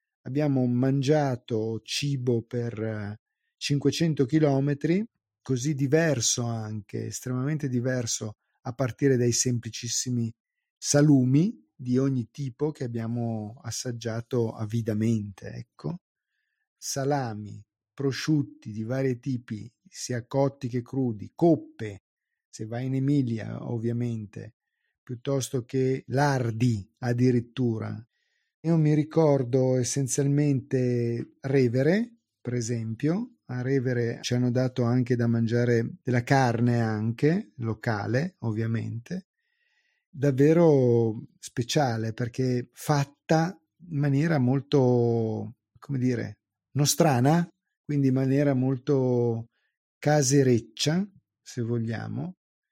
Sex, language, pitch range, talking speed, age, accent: male, Italian, 115-145 Hz, 90 wpm, 40-59, native